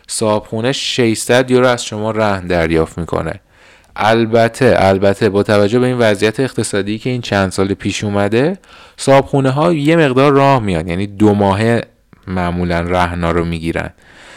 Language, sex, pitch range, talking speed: Persian, male, 95-120 Hz, 150 wpm